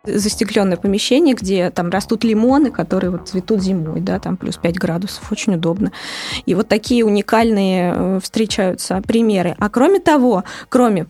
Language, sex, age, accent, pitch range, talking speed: Russian, female, 20-39, native, 190-245 Hz, 145 wpm